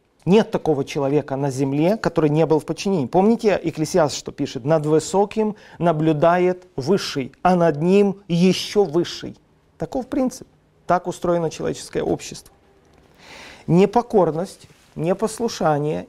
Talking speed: 115 wpm